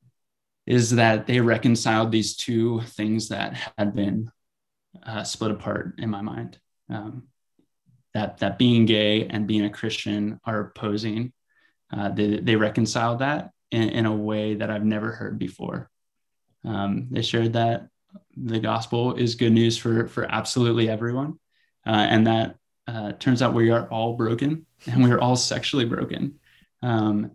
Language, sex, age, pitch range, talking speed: English, male, 20-39, 110-125 Hz, 155 wpm